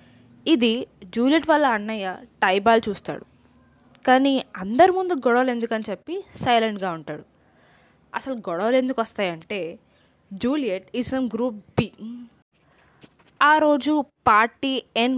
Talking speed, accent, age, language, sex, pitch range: 100 wpm, native, 20-39, Telugu, female, 190-245 Hz